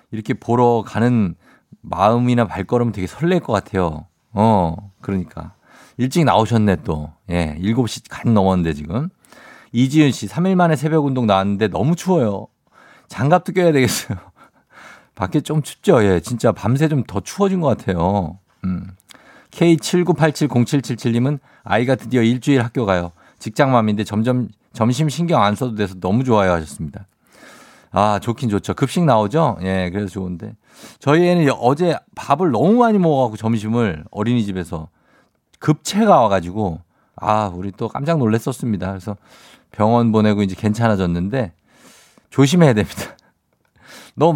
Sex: male